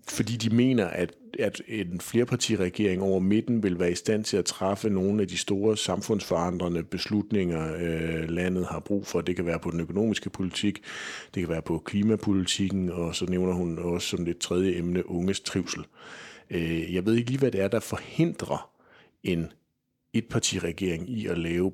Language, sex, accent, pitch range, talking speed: Danish, male, native, 85-105 Hz, 175 wpm